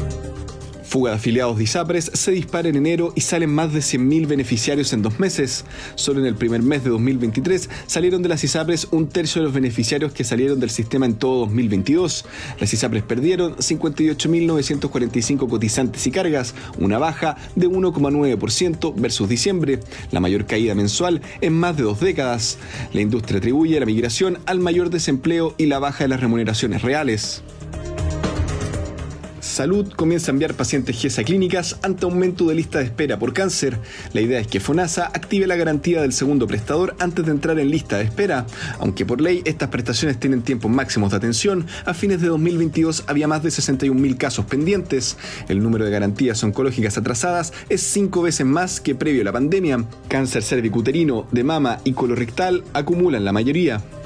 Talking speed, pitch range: 170 wpm, 120-165 Hz